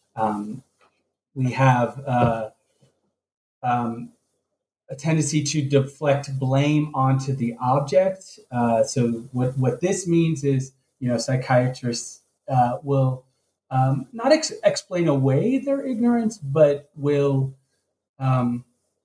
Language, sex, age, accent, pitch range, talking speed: English, male, 30-49, American, 120-145 Hz, 105 wpm